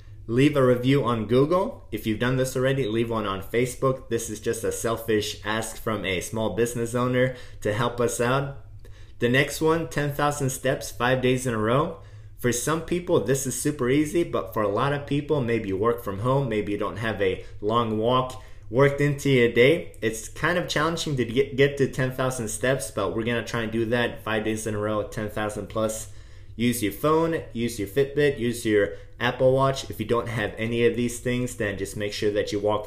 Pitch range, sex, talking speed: 105-130 Hz, male, 215 wpm